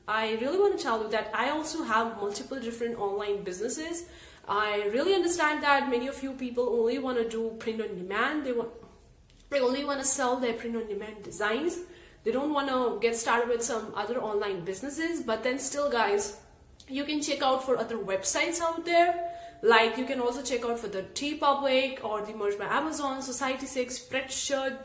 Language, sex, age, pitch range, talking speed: English, female, 30-49, 230-290 Hz, 190 wpm